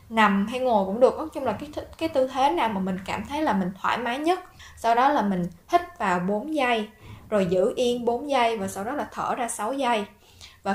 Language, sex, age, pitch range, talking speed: Vietnamese, female, 10-29, 190-255 Hz, 250 wpm